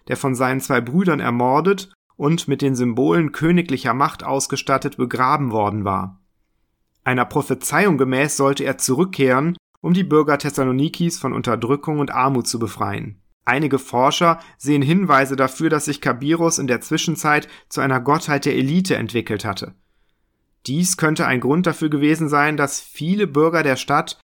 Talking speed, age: 155 wpm, 40-59